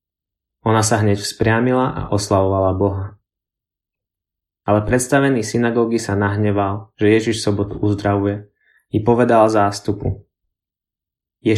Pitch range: 100-115 Hz